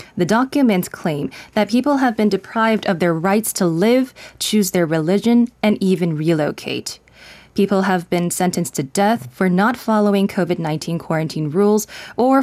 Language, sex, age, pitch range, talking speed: English, female, 20-39, 165-215 Hz, 155 wpm